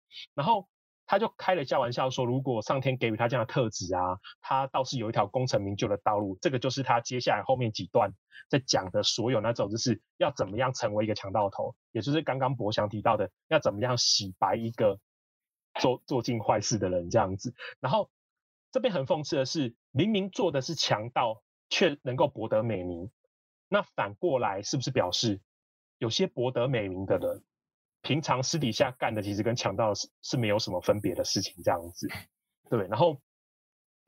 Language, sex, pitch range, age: Chinese, male, 105-135 Hz, 20-39